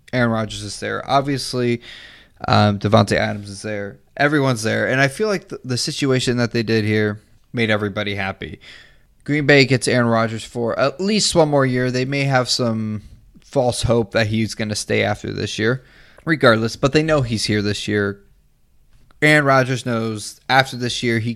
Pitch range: 110-135 Hz